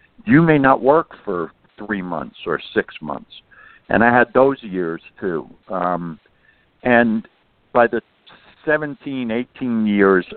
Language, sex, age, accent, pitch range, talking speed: English, male, 60-79, American, 95-130 Hz, 135 wpm